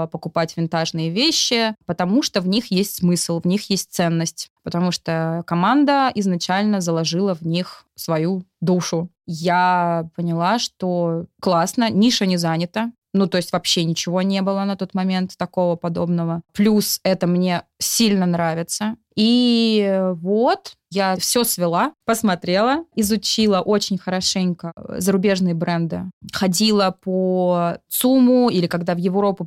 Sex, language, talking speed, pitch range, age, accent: female, Russian, 130 wpm, 175-215 Hz, 20-39, native